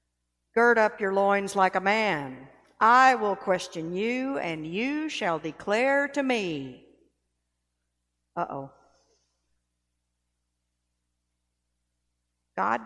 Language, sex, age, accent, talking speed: English, female, 60-79, American, 95 wpm